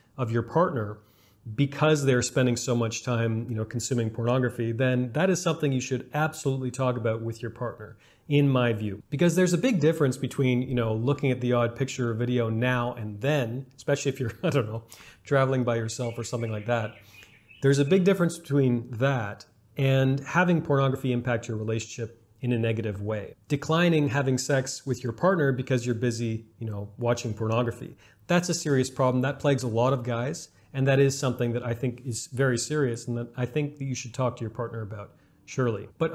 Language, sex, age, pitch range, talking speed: English, male, 40-59, 115-140 Hz, 205 wpm